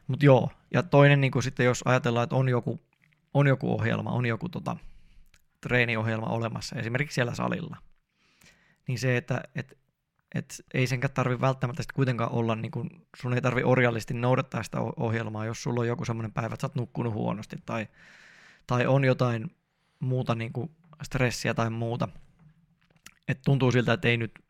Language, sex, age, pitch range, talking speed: Finnish, male, 20-39, 120-145 Hz, 170 wpm